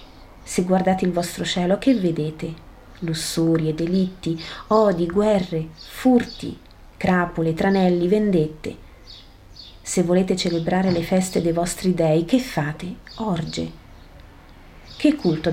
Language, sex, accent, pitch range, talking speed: Italian, female, native, 160-195 Hz, 110 wpm